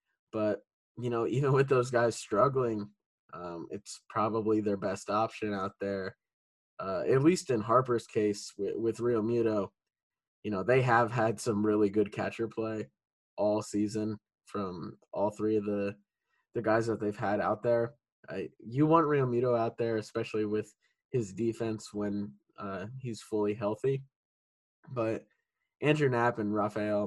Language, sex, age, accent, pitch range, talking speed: English, male, 10-29, American, 105-125 Hz, 155 wpm